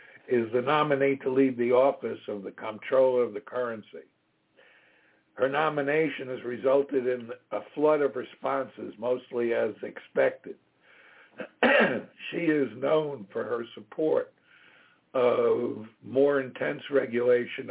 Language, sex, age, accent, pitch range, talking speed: English, male, 60-79, American, 120-145 Hz, 120 wpm